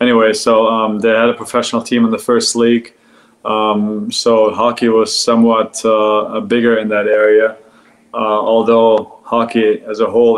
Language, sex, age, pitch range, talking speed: English, male, 20-39, 105-120 Hz, 160 wpm